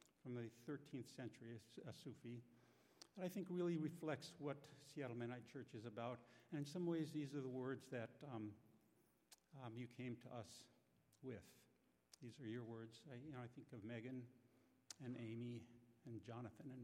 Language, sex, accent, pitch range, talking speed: English, male, American, 110-140 Hz, 180 wpm